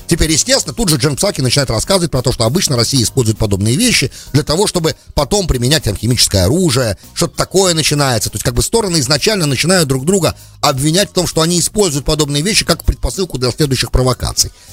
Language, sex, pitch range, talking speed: English, male, 100-155 Hz, 195 wpm